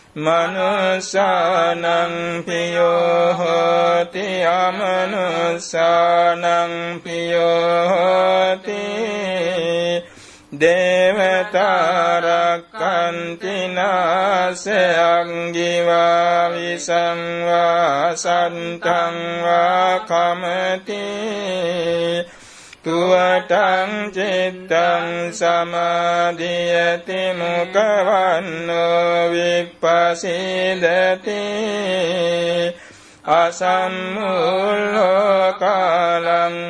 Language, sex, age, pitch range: Vietnamese, male, 60-79, 170-185 Hz